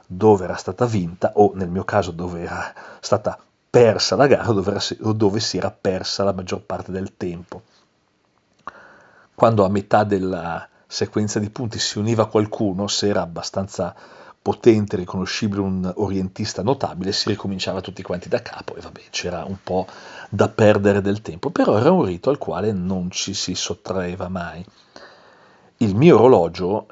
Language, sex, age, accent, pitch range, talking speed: Italian, male, 40-59, native, 95-110 Hz, 160 wpm